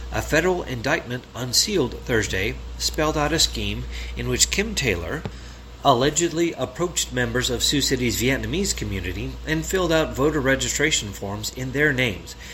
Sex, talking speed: male, 145 wpm